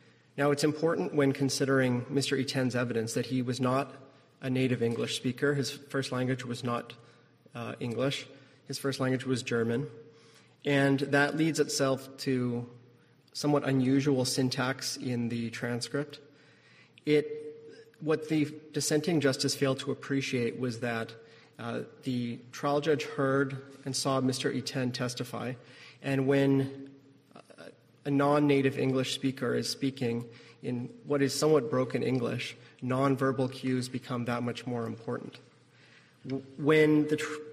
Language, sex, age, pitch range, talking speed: English, male, 30-49, 125-145 Hz, 140 wpm